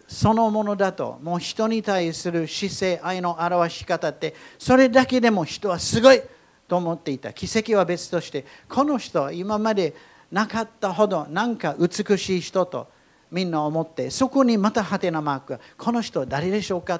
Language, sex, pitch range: Japanese, male, 160-210 Hz